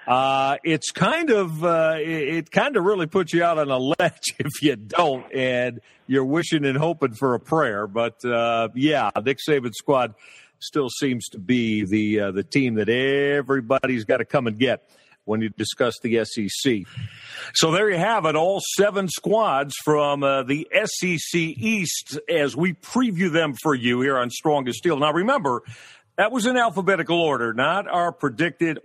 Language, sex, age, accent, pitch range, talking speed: English, male, 50-69, American, 125-170 Hz, 180 wpm